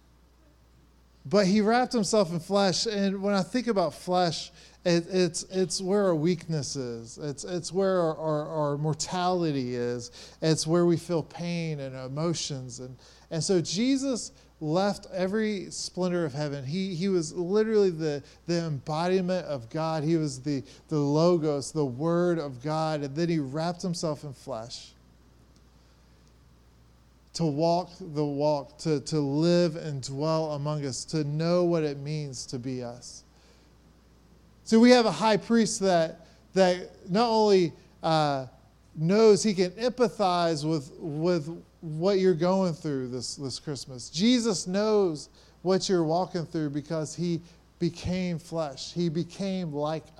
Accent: American